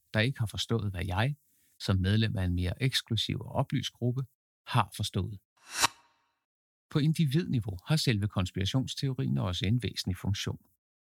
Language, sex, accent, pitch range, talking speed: Danish, male, native, 100-135 Hz, 135 wpm